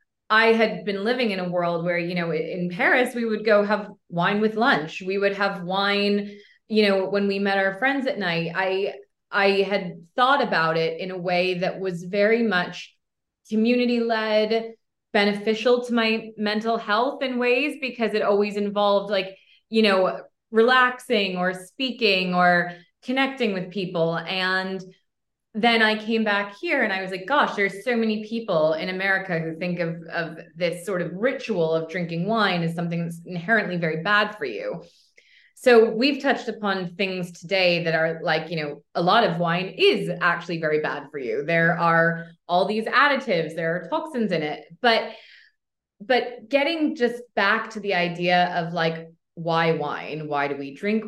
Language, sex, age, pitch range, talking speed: English, female, 20-39, 175-225 Hz, 175 wpm